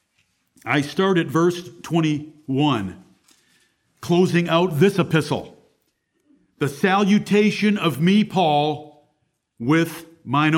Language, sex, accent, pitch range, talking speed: English, male, American, 150-190 Hz, 90 wpm